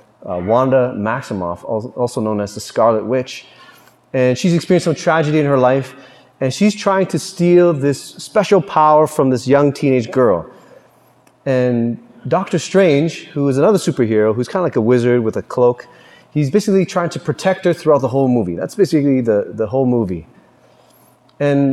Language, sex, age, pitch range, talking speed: English, male, 30-49, 120-160 Hz, 175 wpm